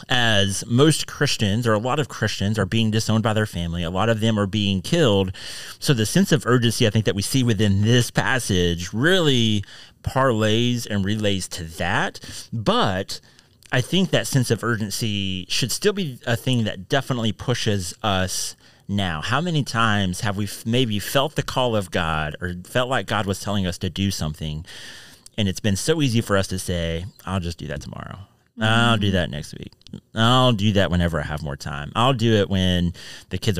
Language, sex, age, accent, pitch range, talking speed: English, male, 30-49, American, 90-120 Hz, 200 wpm